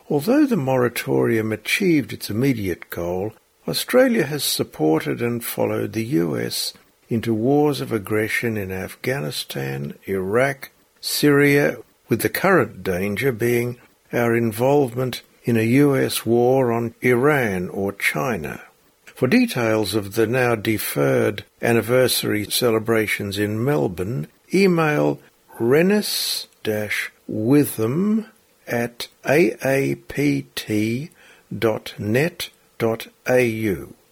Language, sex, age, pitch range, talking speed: English, male, 60-79, 110-140 Hz, 90 wpm